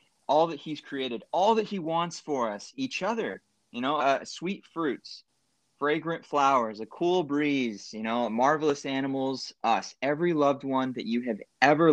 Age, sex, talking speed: 20-39, male, 170 wpm